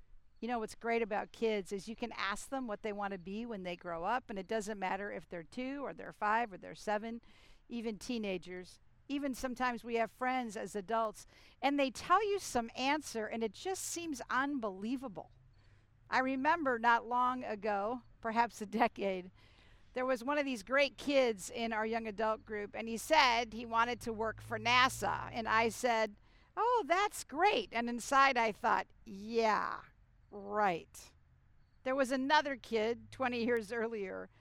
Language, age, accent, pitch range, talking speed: English, 50-69, American, 205-255 Hz, 175 wpm